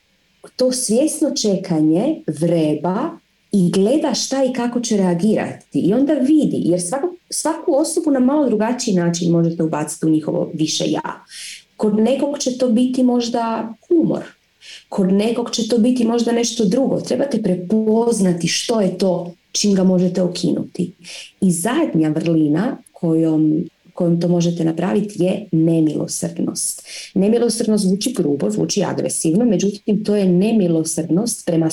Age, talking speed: 30-49, 135 wpm